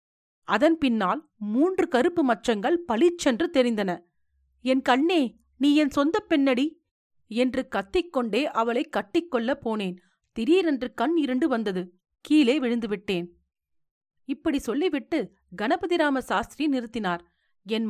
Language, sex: Tamil, female